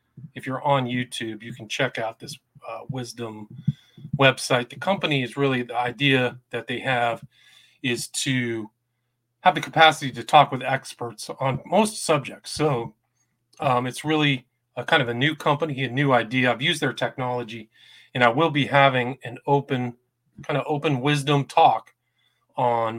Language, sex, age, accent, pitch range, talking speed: English, male, 40-59, American, 120-145 Hz, 165 wpm